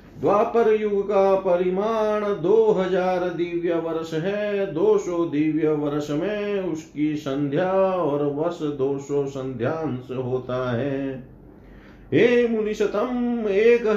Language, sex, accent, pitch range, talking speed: Hindi, male, native, 135-185 Hz, 110 wpm